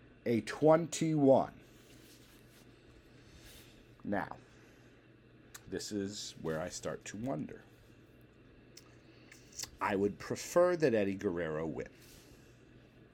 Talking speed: 80 wpm